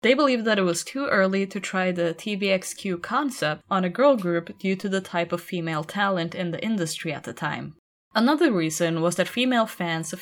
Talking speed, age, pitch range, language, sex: 210 wpm, 10-29, 165-210 Hz, English, female